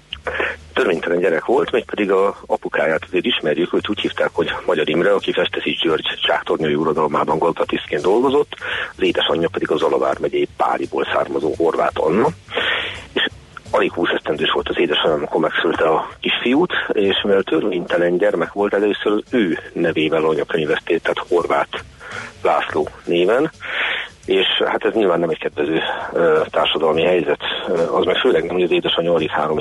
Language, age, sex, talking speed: Hungarian, 40-59, male, 150 wpm